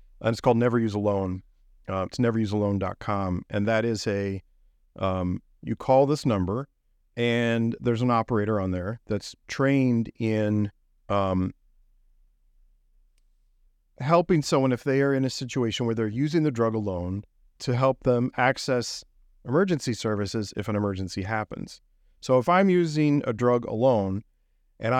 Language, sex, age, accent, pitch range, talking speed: English, male, 40-59, American, 105-135 Hz, 145 wpm